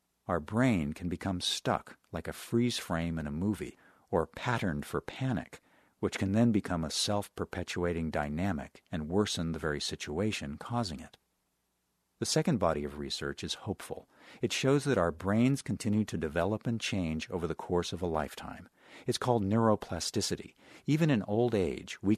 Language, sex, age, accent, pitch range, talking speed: English, male, 50-69, American, 80-110 Hz, 165 wpm